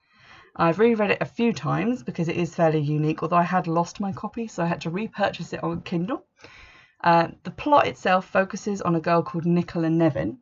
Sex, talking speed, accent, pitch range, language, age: female, 205 wpm, British, 155-180 Hz, English, 20-39